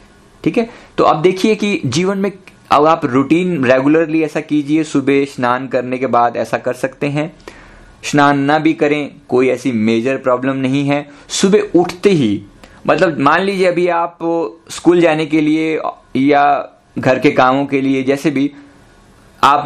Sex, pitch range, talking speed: male, 125-160 Hz, 165 wpm